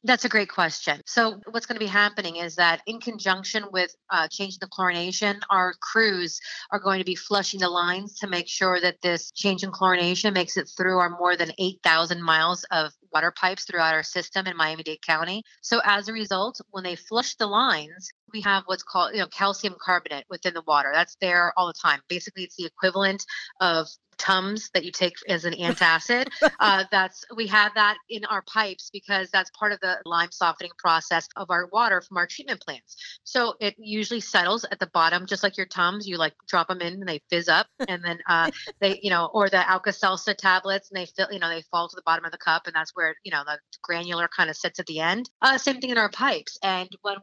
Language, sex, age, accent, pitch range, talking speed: English, female, 30-49, American, 170-205 Hz, 225 wpm